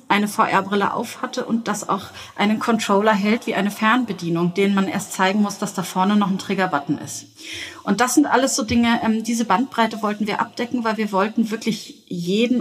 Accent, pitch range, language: German, 195-235 Hz, German